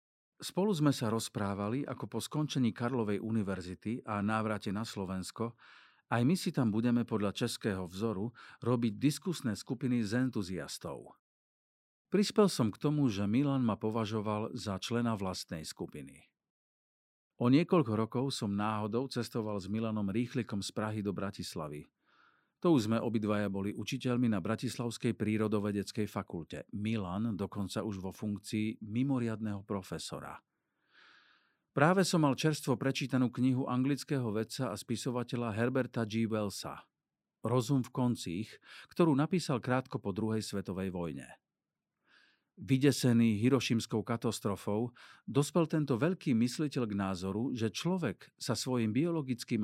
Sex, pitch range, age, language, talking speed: male, 105-135 Hz, 50-69, Slovak, 125 wpm